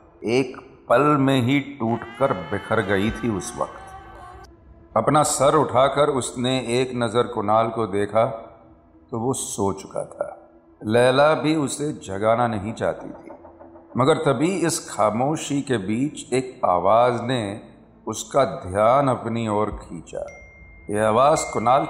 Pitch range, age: 110-150 Hz, 50-69